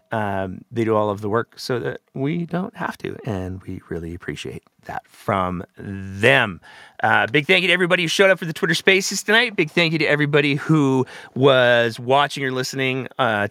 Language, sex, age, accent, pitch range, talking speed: English, male, 30-49, American, 110-160 Hz, 200 wpm